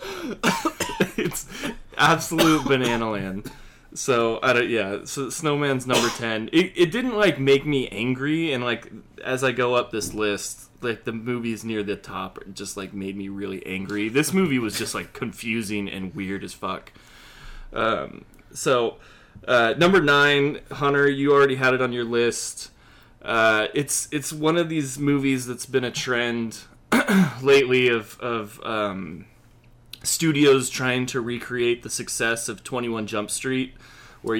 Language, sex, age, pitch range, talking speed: English, male, 20-39, 110-135 Hz, 155 wpm